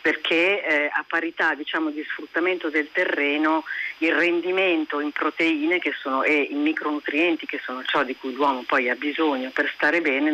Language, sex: Italian, female